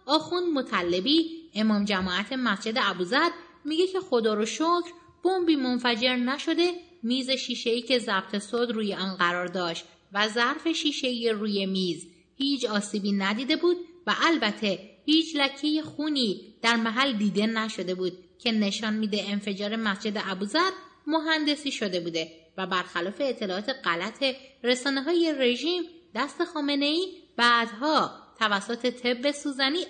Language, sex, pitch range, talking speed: English, female, 205-300 Hz, 130 wpm